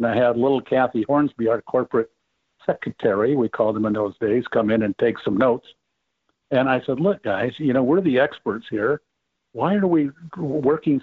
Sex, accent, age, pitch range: male, American, 60-79, 120-150 Hz